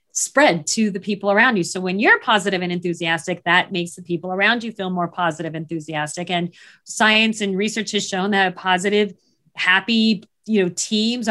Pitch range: 185-240 Hz